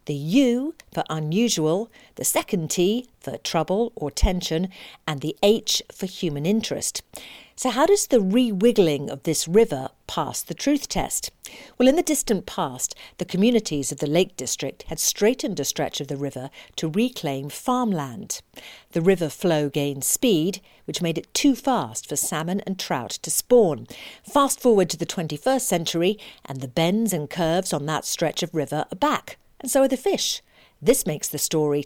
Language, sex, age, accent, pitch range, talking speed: English, female, 50-69, British, 155-225 Hz, 175 wpm